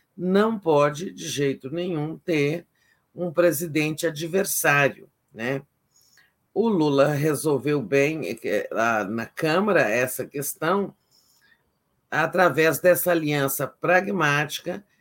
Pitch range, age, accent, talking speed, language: 145-190 Hz, 50-69, Brazilian, 90 wpm, Portuguese